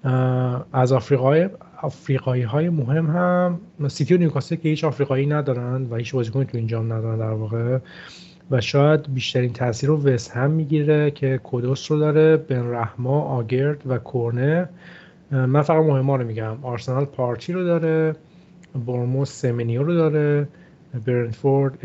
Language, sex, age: Persian, male, 30-49